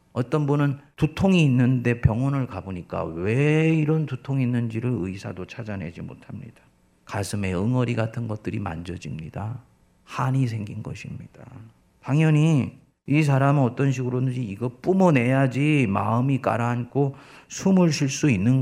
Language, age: Korean, 40-59